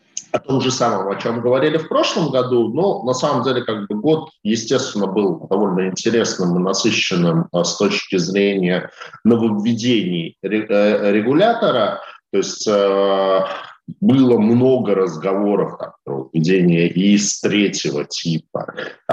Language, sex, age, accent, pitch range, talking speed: Russian, male, 40-59, native, 95-115 Hz, 120 wpm